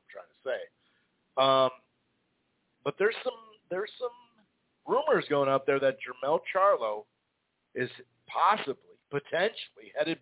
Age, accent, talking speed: 50-69, American, 105 wpm